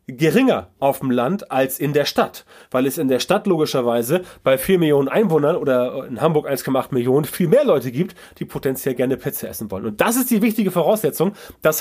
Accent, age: German, 30-49